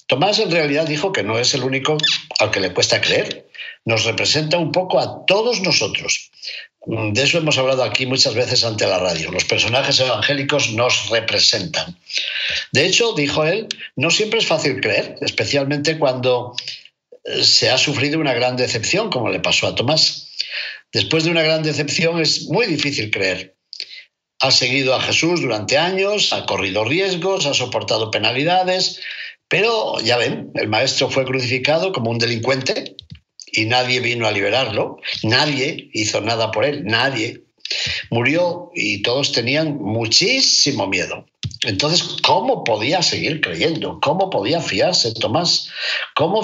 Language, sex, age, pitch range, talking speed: Spanish, male, 60-79, 125-170 Hz, 150 wpm